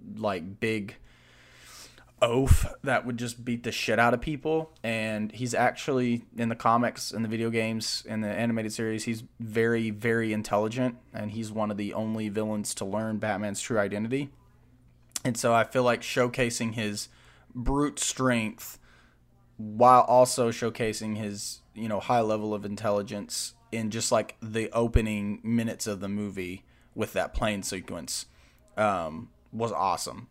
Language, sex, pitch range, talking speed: English, male, 105-125 Hz, 150 wpm